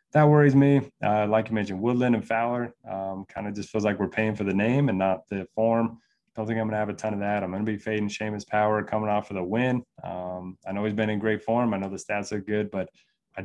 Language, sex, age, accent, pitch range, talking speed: English, male, 20-39, American, 100-115 Hz, 270 wpm